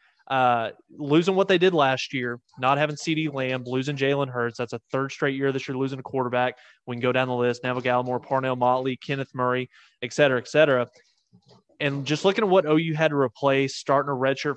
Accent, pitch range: American, 125-145 Hz